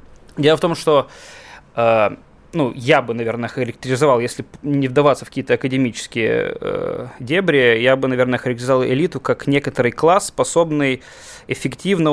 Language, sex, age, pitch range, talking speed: Russian, male, 20-39, 125-160 Hz, 140 wpm